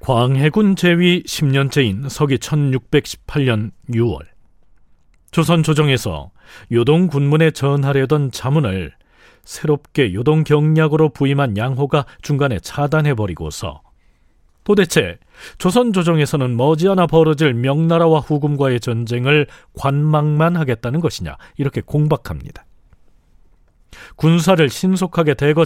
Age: 40-59